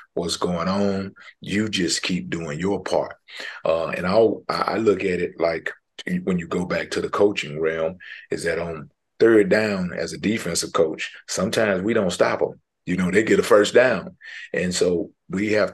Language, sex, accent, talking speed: English, male, American, 190 wpm